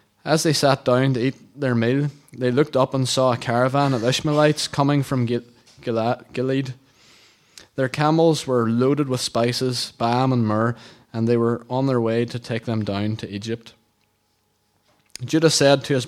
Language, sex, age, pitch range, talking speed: English, male, 20-39, 115-140 Hz, 175 wpm